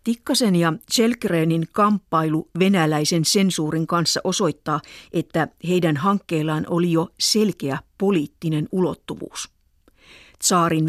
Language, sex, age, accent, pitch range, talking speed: Finnish, female, 50-69, native, 150-180 Hz, 95 wpm